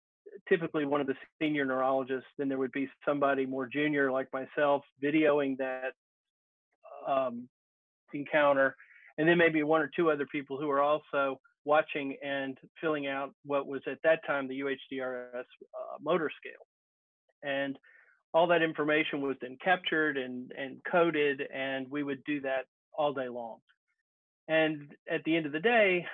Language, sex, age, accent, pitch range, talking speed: English, male, 40-59, American, 135-155 Hz, 160 wpm